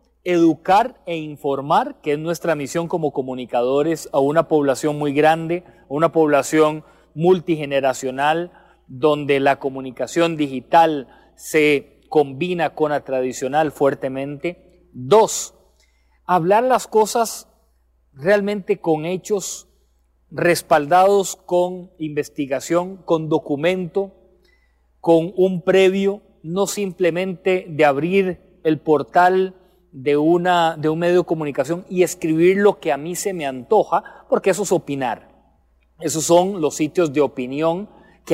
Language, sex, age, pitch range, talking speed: English, male, 40-59, 140-180 Hz, 120 wpm